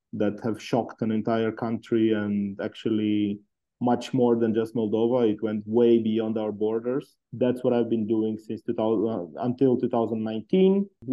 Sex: male